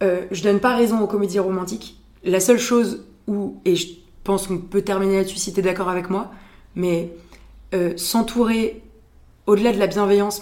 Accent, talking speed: French, 180 wpm